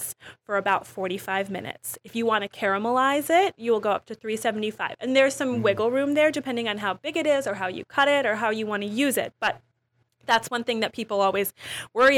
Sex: female